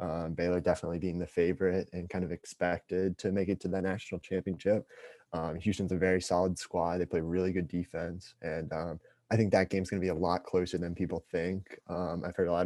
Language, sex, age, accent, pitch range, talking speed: English, male, 20-39, American, 90-100 Hz, 225 wpm